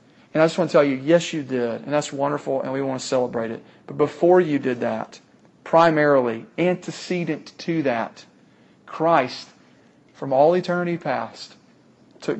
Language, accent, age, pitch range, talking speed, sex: English, American, 40-59, 130-160 Hz, 165 wpm, male